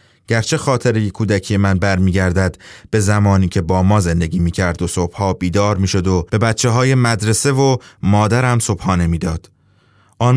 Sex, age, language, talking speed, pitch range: male, 30-49, English, 155 wpm, 95-125 Hz